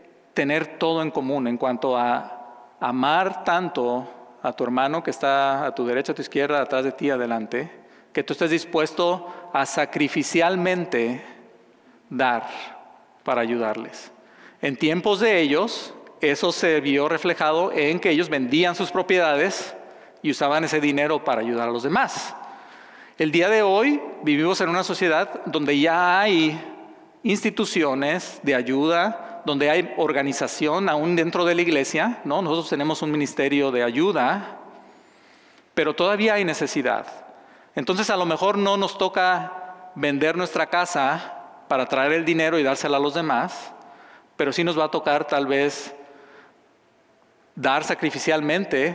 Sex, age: male, 40-59